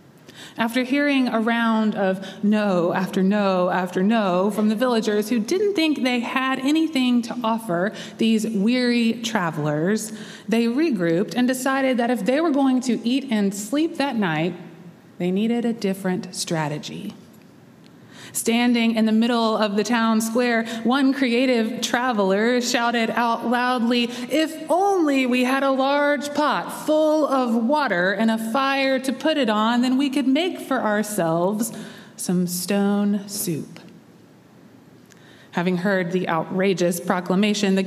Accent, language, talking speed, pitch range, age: American, English, 145 wpm, 195-260 Hz, 30-49